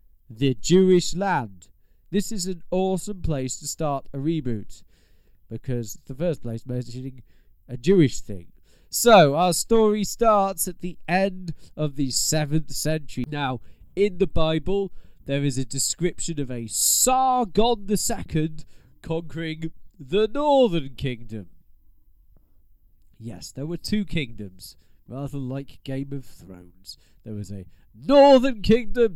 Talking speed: 130 wpm